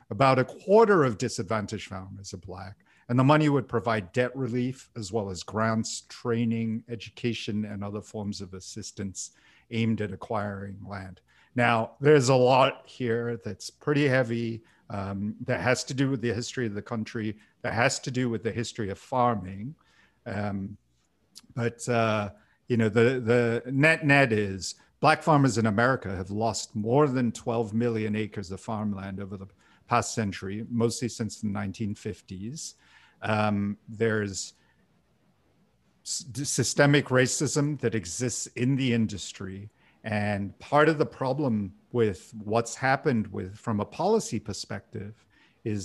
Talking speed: 150 wpm